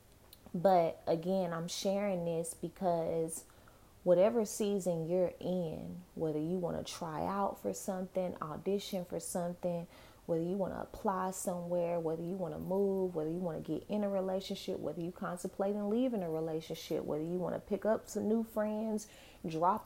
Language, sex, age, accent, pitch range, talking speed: English, female, 20-39, American, 165-195 Hz, 170 wpm